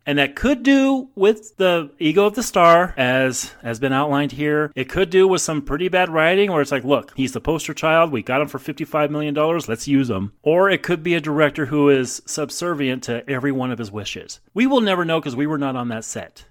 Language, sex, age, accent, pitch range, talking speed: English, male, 30-49, American, 120-165 Hz, 240 wpm